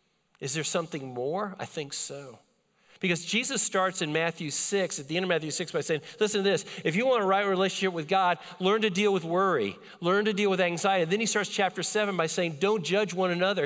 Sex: male